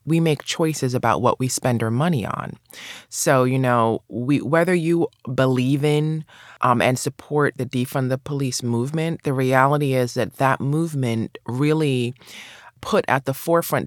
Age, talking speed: 20-39, 160 wpm